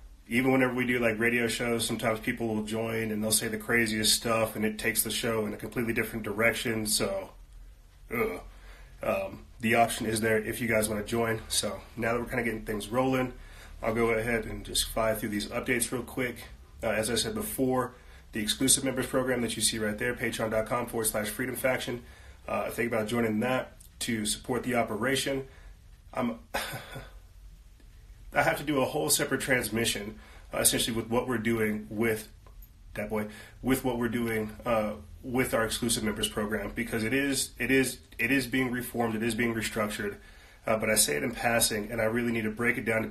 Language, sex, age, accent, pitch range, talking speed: English, male, 30-49, American, 110-120 Hz, 200 wpm